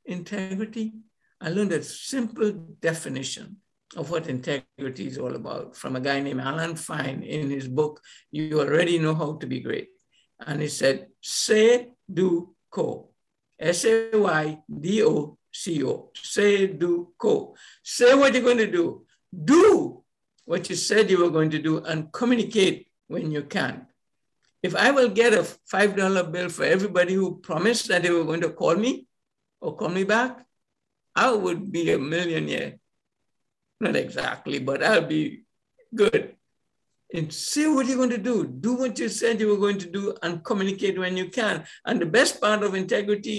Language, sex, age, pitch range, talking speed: English, male, 60-79, 155-225 Hz, 165 wpm